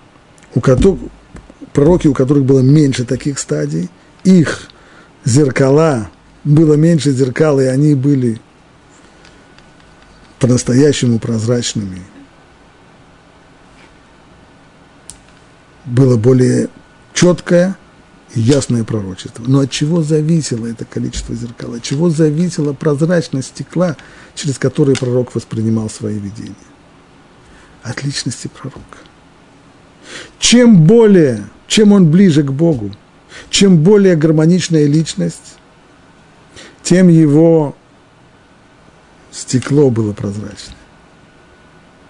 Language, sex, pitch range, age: Russian, male, 120-165 Hz, 50-69